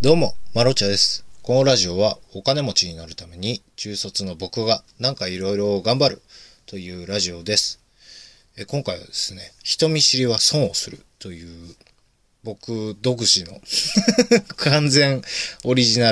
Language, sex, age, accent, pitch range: Japanese, male, 20-39, native, 95-135 Hz